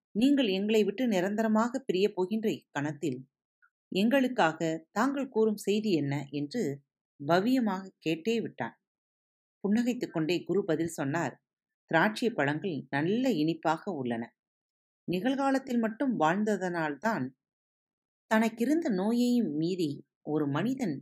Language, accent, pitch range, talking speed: Tamil, native, 155-235 Hz, 90 wpm